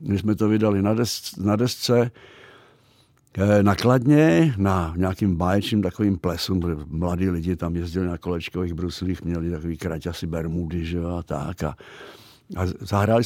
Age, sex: 70-89, male